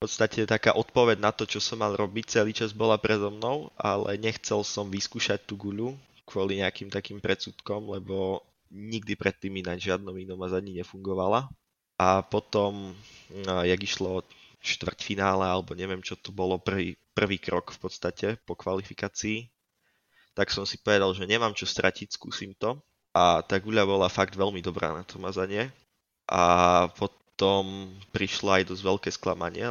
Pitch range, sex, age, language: 90-105 Hz, male, 20-39, Czech